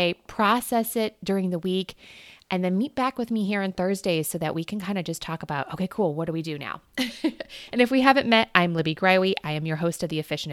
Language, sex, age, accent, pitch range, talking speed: English, female, 20-39, American, 160-210 Hz, 255 wpm